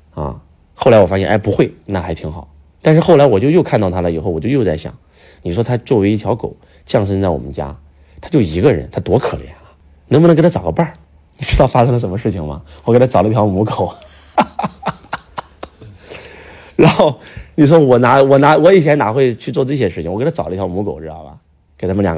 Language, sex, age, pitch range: Chinese, male, 30-49, 75-100 Hz